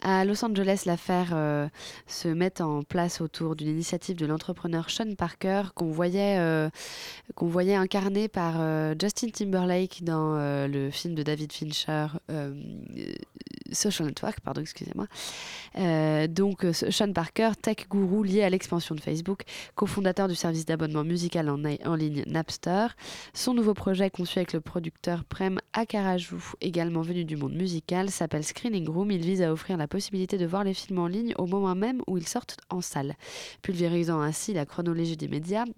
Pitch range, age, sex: 160-195 Hz, 20-39, female